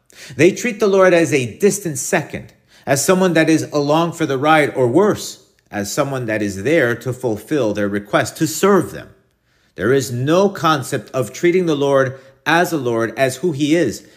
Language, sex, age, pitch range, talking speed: English, male, 50-69, 120-165 Hz, 190 wpm